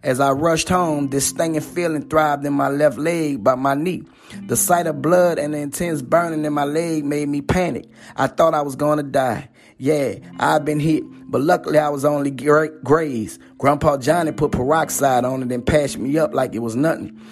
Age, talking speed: 30-49, 210 wpm